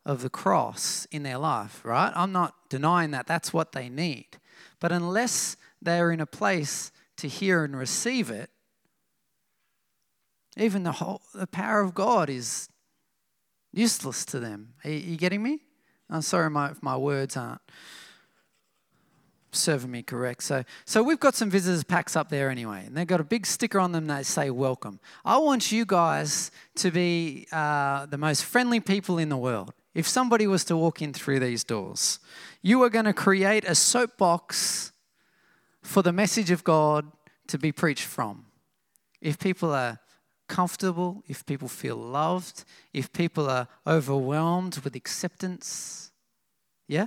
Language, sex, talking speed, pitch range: English, male, 160 wpm, 145-190 Hz